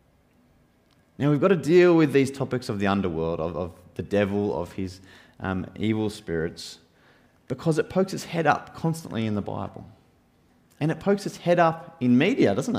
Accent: Australian